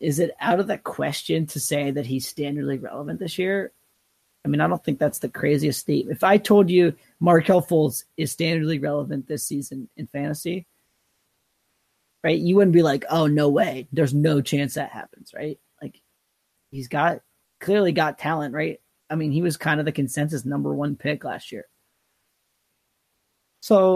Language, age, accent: English, 30-49, American